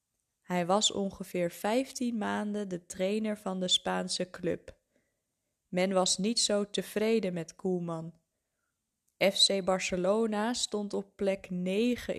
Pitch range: 180-215 Hz